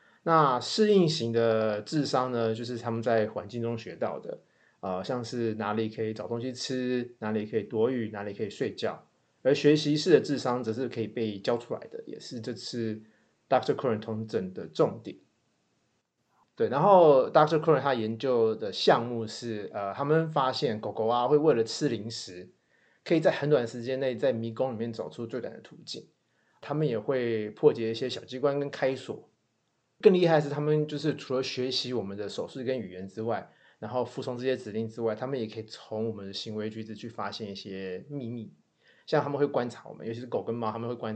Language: Chinese